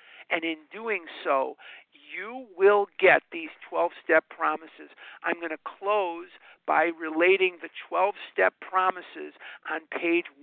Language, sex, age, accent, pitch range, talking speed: English, male, 50-69, American, 160-205 Hz, 120 wpm